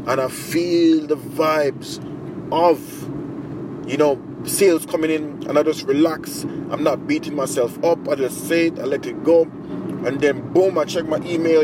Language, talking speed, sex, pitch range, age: English, 180 wpm, male, 150-175 Hz, 30-49